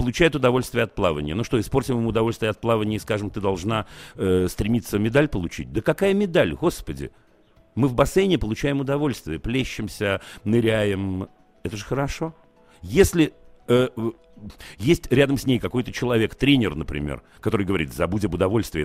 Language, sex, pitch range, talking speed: Russian, male, 90-130 Hz, 155 wpm